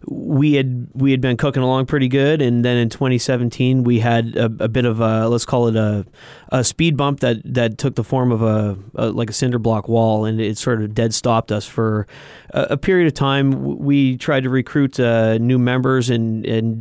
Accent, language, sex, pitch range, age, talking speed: American, English, male, 115-135 Hz, 30-49, 220 wpm